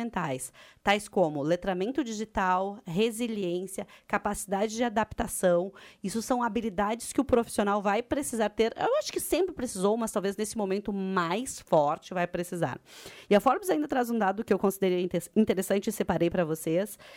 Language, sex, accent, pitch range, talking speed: Portuguese, female, Brazilian, 180-235 Hz, 155 wpm